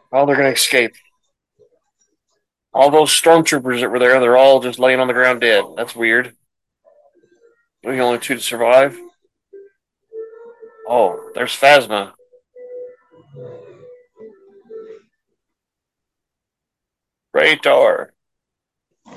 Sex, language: male, English